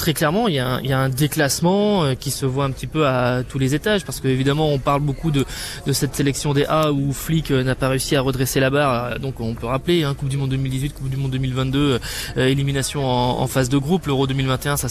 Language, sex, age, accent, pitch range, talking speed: French, male, 20-39, French, 130-155 Hz, 260 wpm